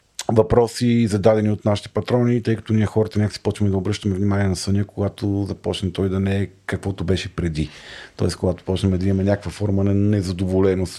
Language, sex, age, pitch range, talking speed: Bulgarian, male, 40-59, 95-115 Hz, 190 wpm